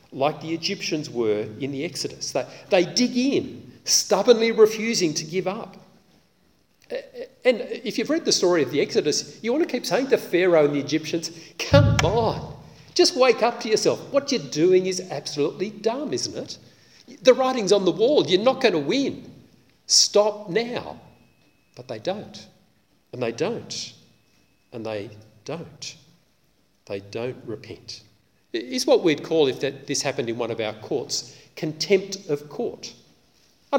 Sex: male